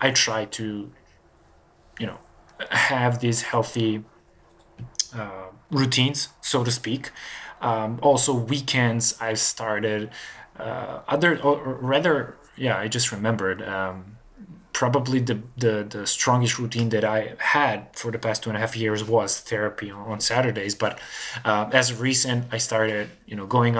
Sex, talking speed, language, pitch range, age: male, 145 wpm, English, 110-120 Hz, 20-39